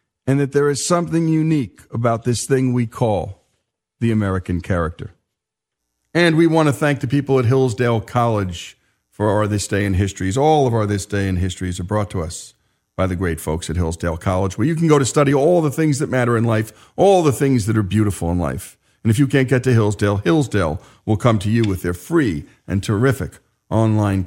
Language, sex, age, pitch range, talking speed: English, male, 50-69, 105-155 Hz, 215 wpm